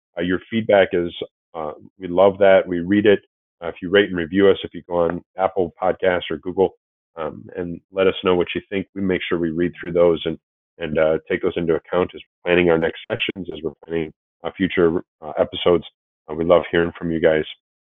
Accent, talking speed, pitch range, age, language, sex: American, 230 wpm, 85-100 Hz, 30-49, English, male